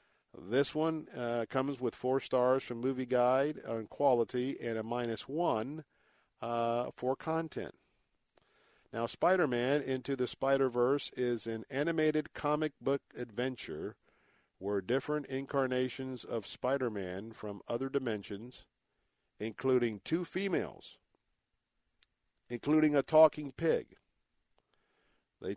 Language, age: English, 50-69